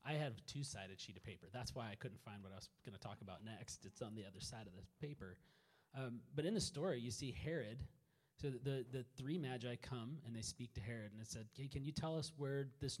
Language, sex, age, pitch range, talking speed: English, male, 30-49, 110-135 Hz, 265 wpm